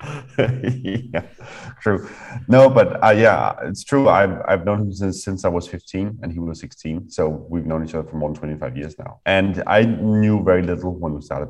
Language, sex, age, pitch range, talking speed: English, male, 30-49, 80-100 Hz, 210 wpm